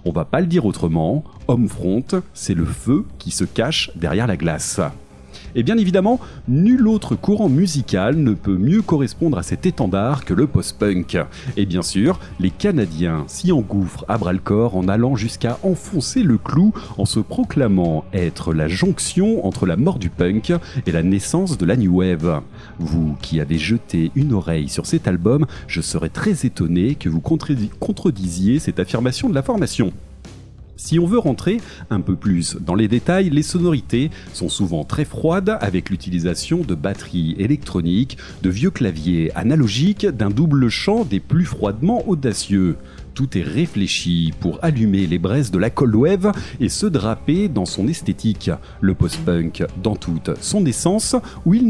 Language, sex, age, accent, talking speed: French, male, 40-59, French, 170 wpm